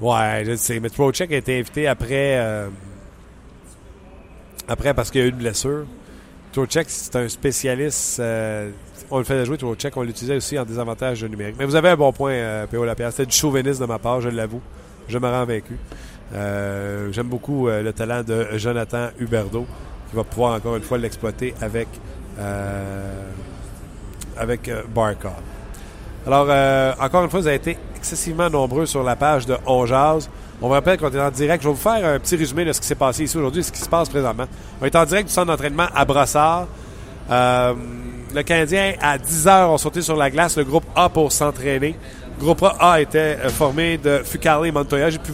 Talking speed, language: 200 wpm, French